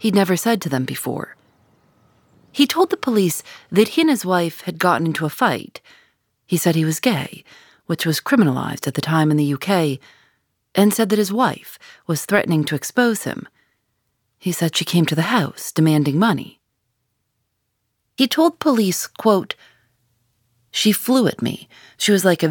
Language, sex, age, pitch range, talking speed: English, female, 40-59, 135-205 Hz, 175 wpm